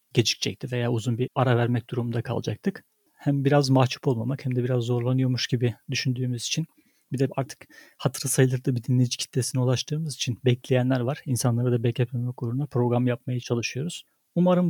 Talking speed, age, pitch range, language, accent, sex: 160 wpm, 40-59, 125-155 Hz, Turkish, native, male